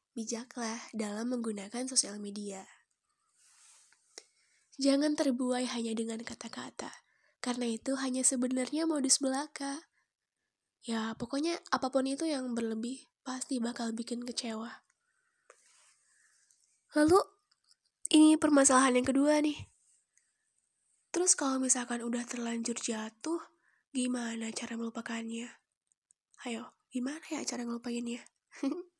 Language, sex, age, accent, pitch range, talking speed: Indonesian, female, 10-29, native, 230-270 Hz, 95 wpm